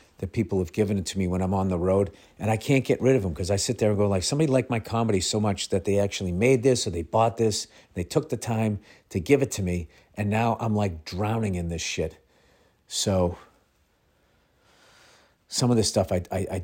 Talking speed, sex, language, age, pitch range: 240 wpm, male, English, 50-69, 90-110 Hz